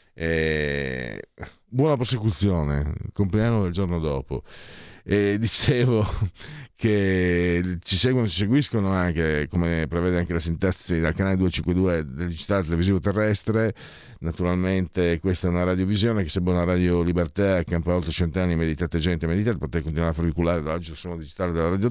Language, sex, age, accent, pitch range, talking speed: Italian, male, 50-69, native, 85-115 Hz, 150 wpm